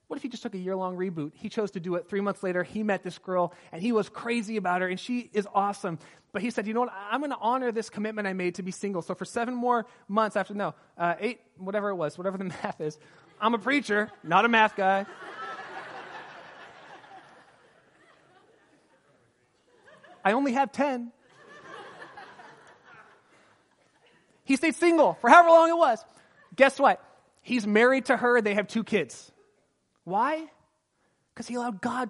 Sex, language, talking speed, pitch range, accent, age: male, English, 180 wpm, 180-235 Hz, American, 30-49